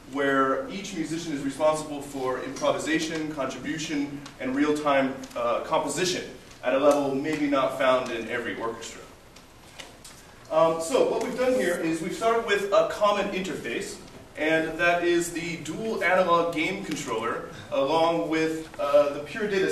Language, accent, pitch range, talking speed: English, American, 145-200 Hz, 145 wpm